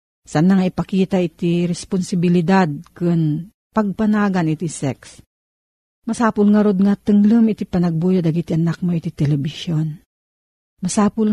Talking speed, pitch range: 125 wpm, 170-215 Hz